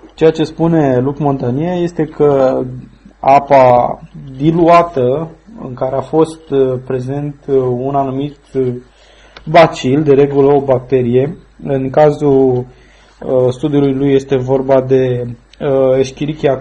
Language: Romanian